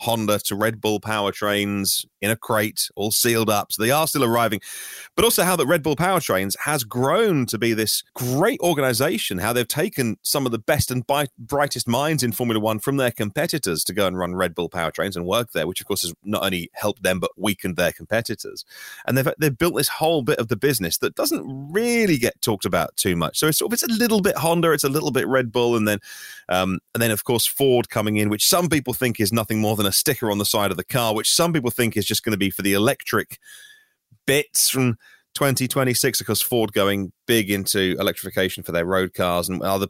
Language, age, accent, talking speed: English, 30-49, British, 230 wpm